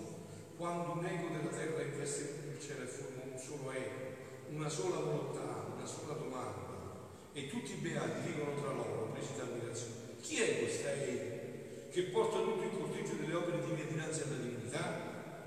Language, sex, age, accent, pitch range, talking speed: Italian, male, 50-69, native, 145-205 Hz, 165 wpm